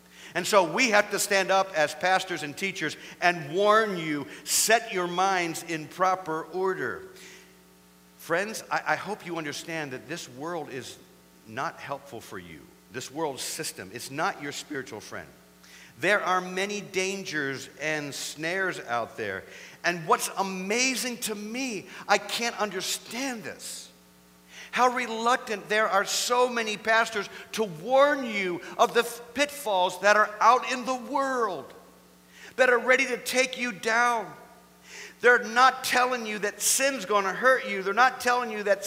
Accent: American